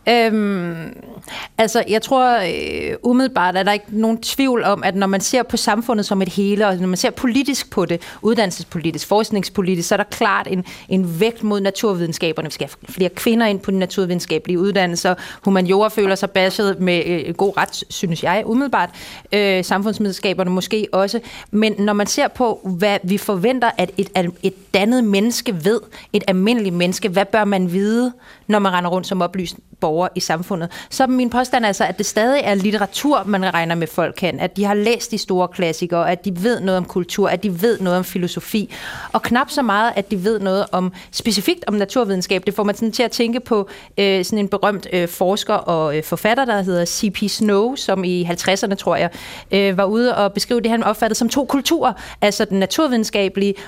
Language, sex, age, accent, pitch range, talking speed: Danish, female, 30-49, native, 185-230 Hz, 200 wpm